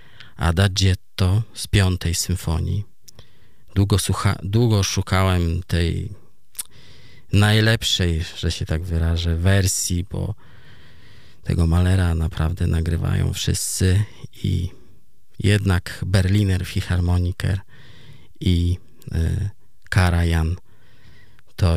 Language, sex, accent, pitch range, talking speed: Polish, male, native, 90-115 Hz, 80 wpm